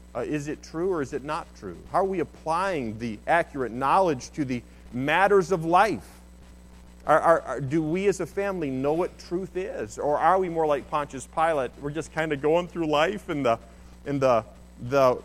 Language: English